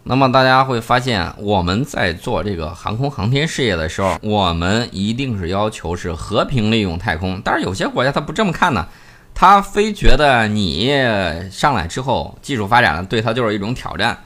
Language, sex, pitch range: Chinese, male, 95-130 Hz